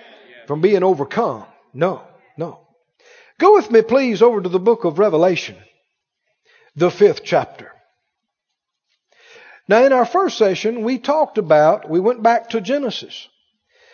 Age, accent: 50-69, American